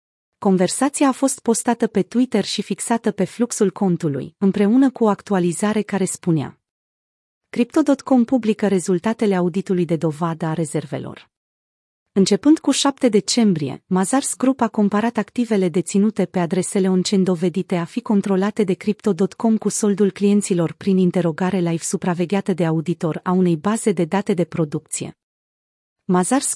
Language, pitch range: Romanian, 175-215 Hz